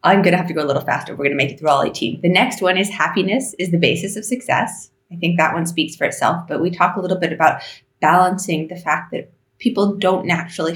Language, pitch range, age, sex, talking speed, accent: English, 150-185 Hz, 30-49, female, 270 wpm, American